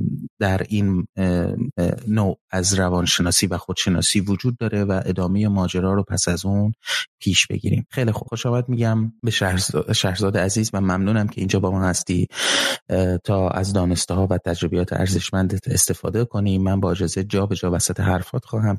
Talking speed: 155 wpm